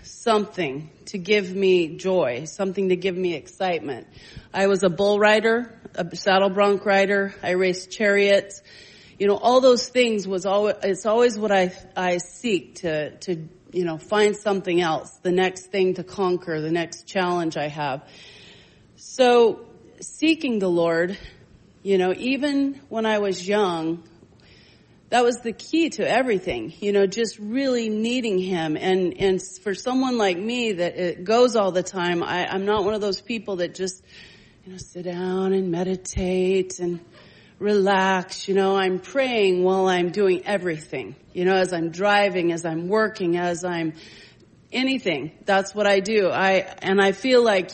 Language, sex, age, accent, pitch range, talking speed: English, female, 40-59, American, 180-210 Hz, 165 wpm